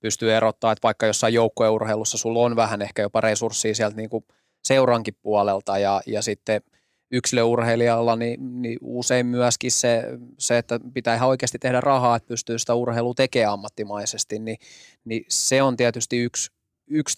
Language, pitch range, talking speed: Finnish, 115-125 Hz, 160 wpm